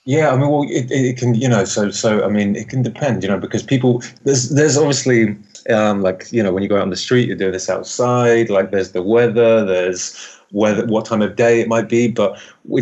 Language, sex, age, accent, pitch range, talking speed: English, male, 20-39, British, 100-120 Hz, 250 wpm